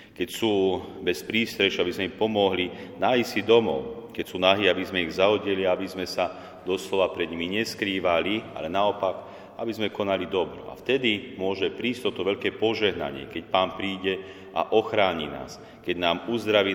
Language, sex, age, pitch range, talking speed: Slovak, male, 40-59, 85-110 Hz, 170 wpm